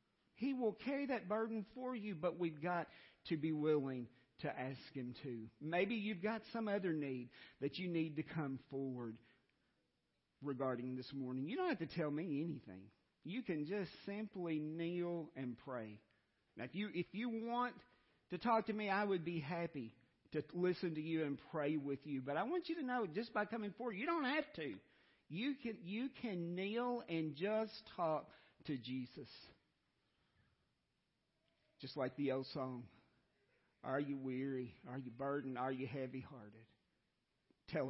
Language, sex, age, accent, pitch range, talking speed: English, male, 50-69, American, 125-180 Hz, 170 wpm